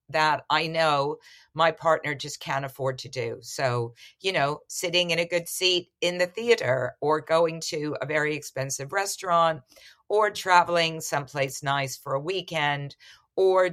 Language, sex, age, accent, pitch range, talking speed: English, female, 50-69, American, 135-170 Hz, 155 wpm